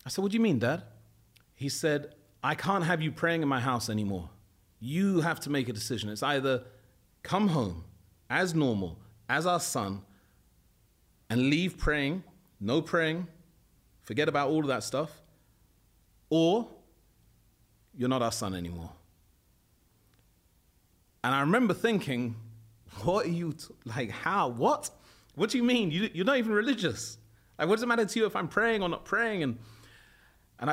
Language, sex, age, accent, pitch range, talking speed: English, male, 30-49, British, 110-165 Hz, 165 wpm